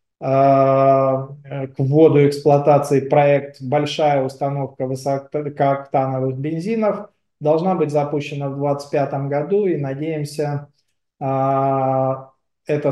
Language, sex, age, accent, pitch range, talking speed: Russian, male, 20-39, native, 135-160 Hz, 80 wpm